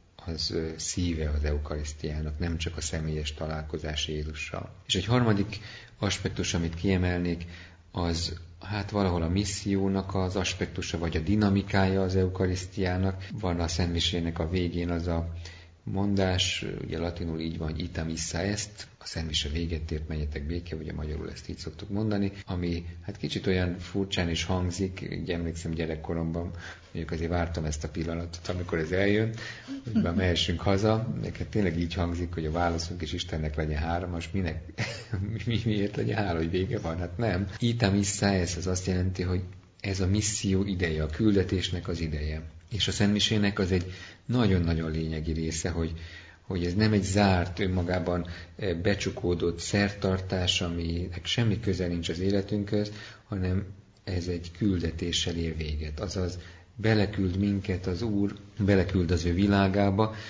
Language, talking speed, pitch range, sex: Hungarian, 155 wpm, 85-100 Hz, male